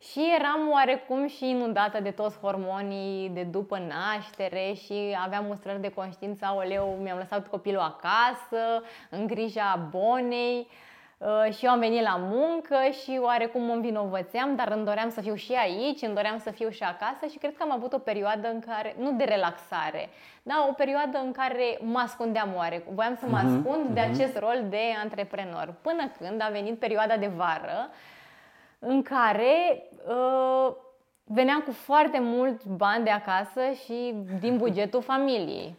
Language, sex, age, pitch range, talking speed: Romanian, female, 20-39, 200-255 Hz, 165 wpm